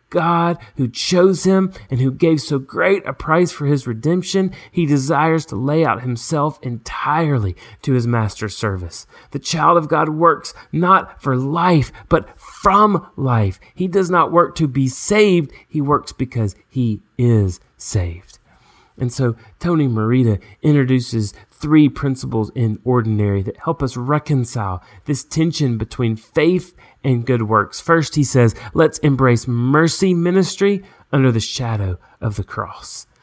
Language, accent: English, American